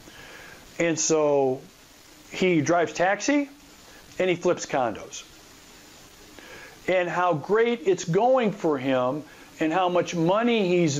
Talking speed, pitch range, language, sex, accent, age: 115 wpm, 140-190 Hz, English, male, American, 50-69